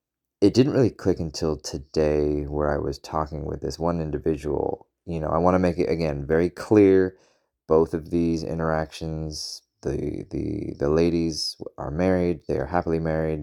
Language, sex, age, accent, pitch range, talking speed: English, male, 20-39, American, 75-95 Hz, 170 wpm